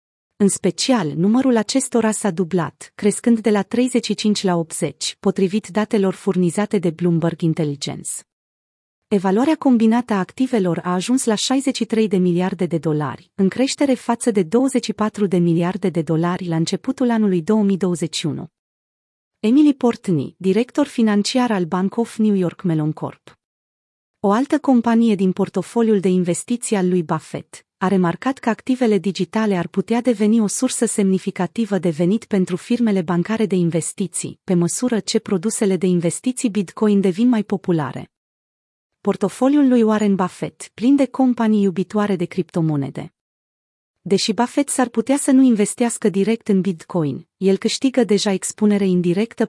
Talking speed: 140 wpm